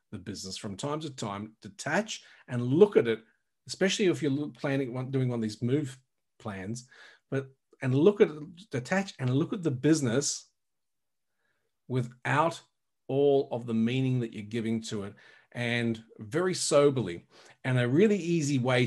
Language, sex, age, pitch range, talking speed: English, male, 40-59, 115-155 Hz, 155 wpm